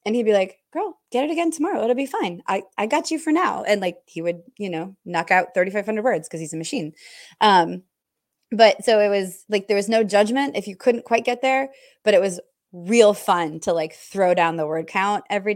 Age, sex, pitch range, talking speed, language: 20-39, female, 175-245 Hz, 235 wpm, English